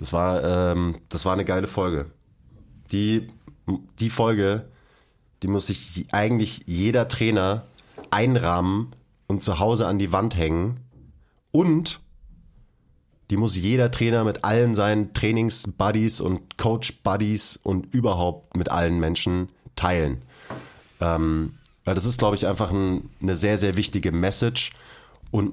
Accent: German